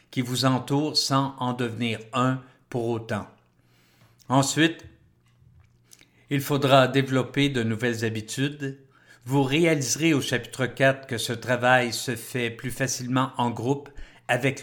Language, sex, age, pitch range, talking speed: French, male, 50-69, 120-145 Hz, 125 wpm